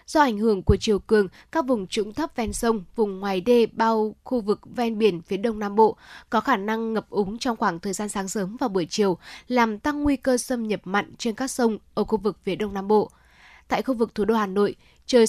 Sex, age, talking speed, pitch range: female, 10-29, 245 wpm, 200-240 Hz